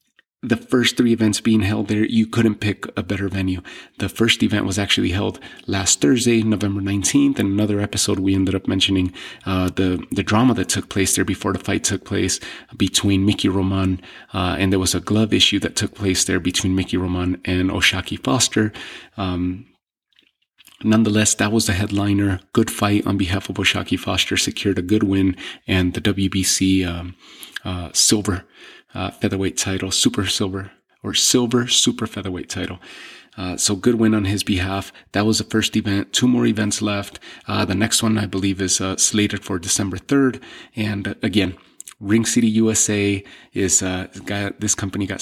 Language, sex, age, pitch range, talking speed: English, male, 30-49, 95-110 Hz, 180 wpm